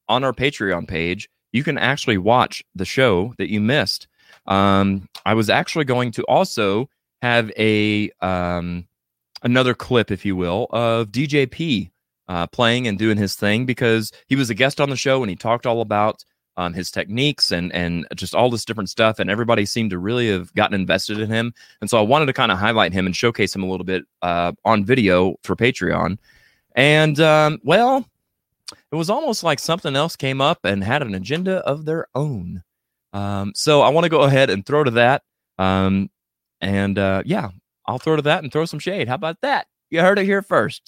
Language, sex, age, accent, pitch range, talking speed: English, male, 20-39, American, 95-135 Hz, 205 wpm